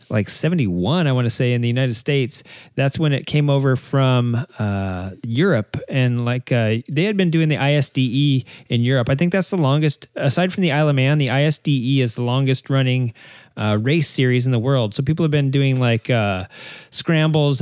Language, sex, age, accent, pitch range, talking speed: English, male, 30-49, American, 125-150 Hz, 205 wpm